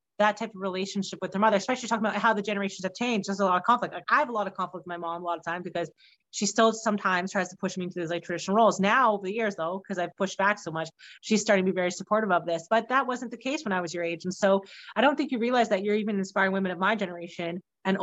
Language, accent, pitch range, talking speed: English, American, 185-215 Hz, 305 wpm